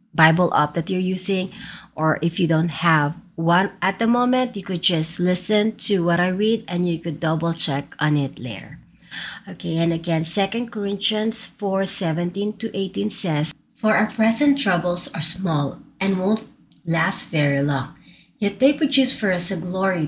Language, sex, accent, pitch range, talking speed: English, female, Filipino, 165-215 Hz, 175 wpm